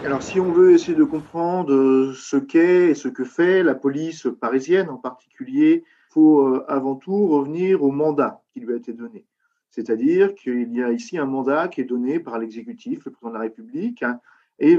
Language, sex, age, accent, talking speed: French, male, 40-59, French, 195 wpm